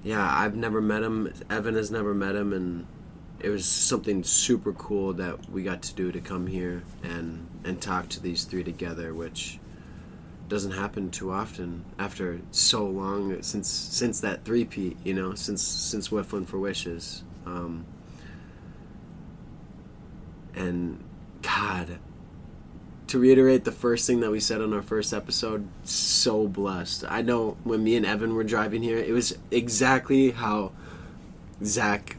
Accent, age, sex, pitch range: American, 20-39, male, 90-105 Hz